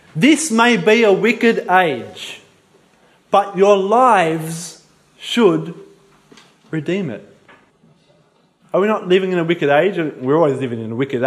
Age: 20-39